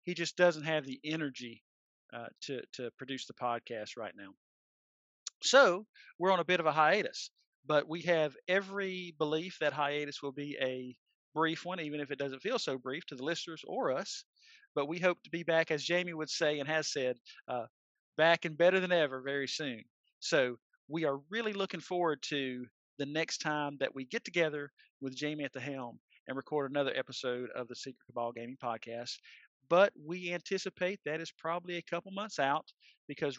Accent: American